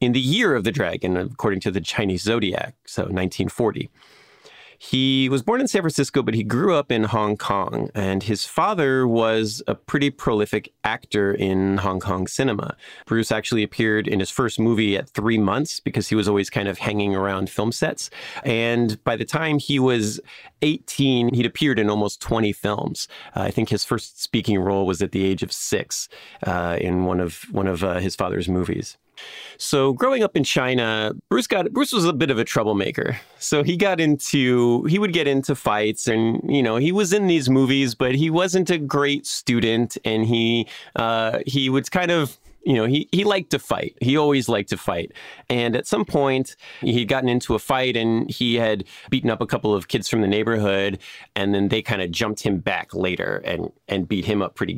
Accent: American